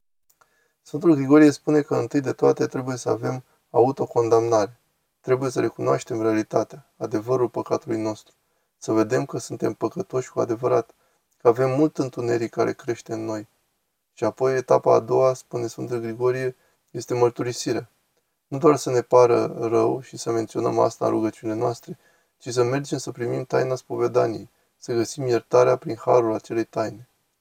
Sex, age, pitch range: male, 20-39, 120-155 Hz